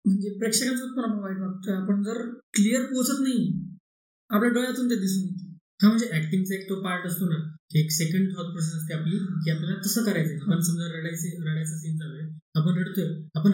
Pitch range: 185-225 Hz